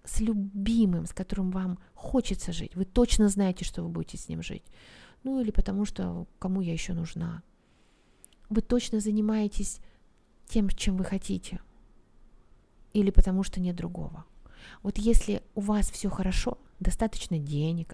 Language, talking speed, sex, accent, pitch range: Russian, 145 wpm, female, native, 175-210 Hz